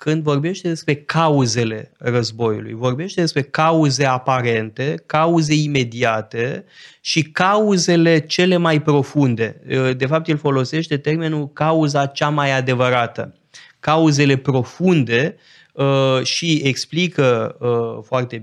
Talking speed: 100 wpm